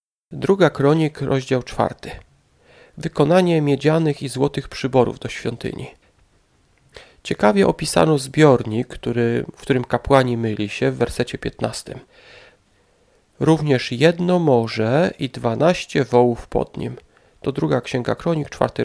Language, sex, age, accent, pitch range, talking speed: Polish, male, 40-59, native, 125-160 Hz, 115 wpm